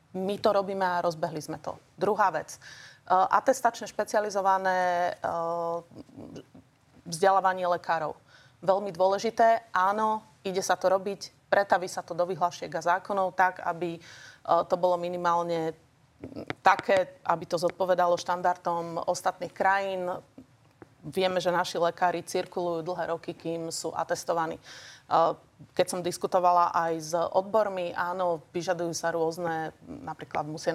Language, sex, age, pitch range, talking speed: Slovak, female, 30-49, 170-190 Hz, 125 wpm